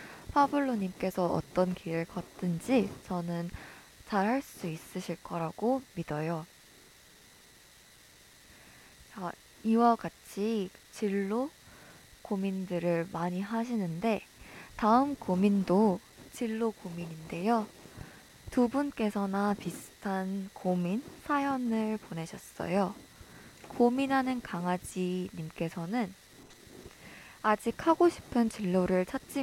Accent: native